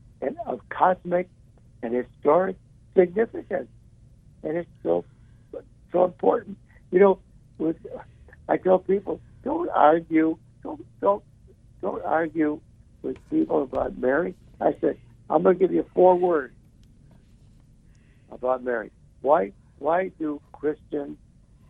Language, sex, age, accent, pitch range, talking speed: English, male, 60-79, American, 115-155 Hz, 115 wpm